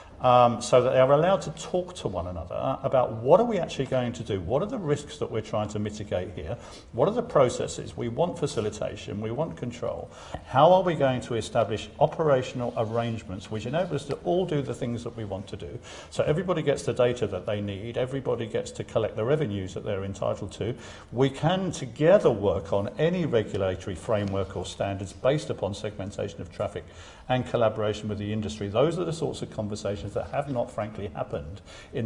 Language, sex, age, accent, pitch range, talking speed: English, male, 50-69, British, 105-140 Hz, 205 wpm